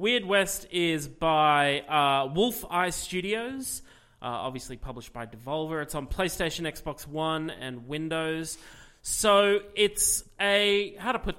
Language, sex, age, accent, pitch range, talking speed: English, male, 30-49, Australian, 135-175 Hz, 135 wpm